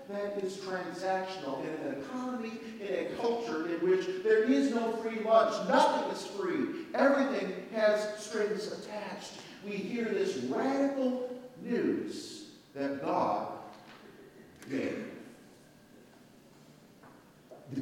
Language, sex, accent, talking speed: English, male, American, 110 wpm